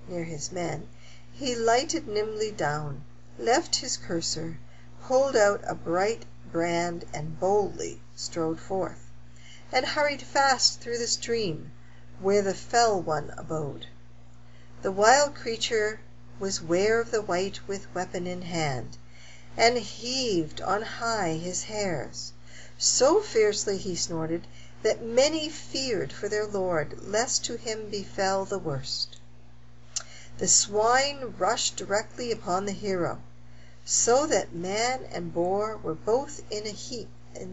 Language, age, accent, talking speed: English, 50-69, American, 130 wpm